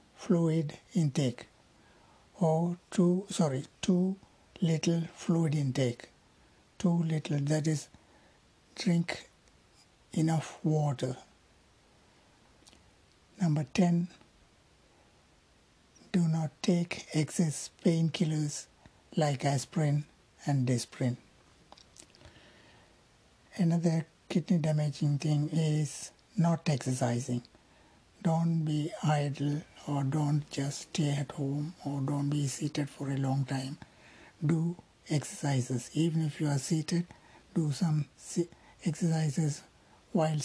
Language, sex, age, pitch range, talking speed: Tamil, male, 60-79, 140-165 Hz, 95 wpm